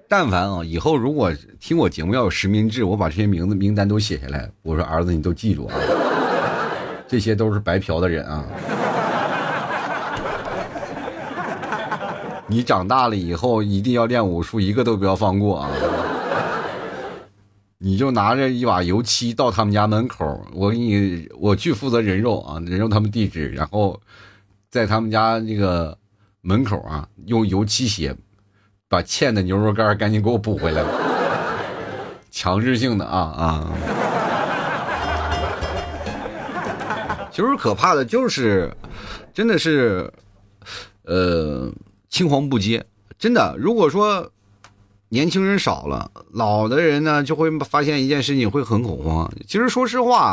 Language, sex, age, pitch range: Chinese, male, 30-49, 95-120 Hz